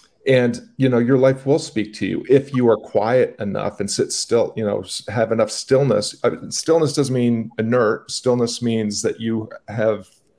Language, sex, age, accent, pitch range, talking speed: English, male, 40-59, American, 110-135 Hz, 180 wpm